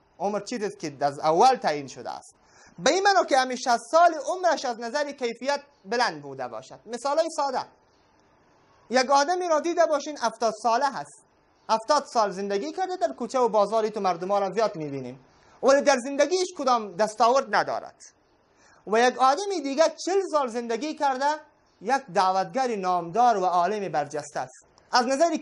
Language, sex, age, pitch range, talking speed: English, male, 30-49, 200-290 Hz, 160 wpm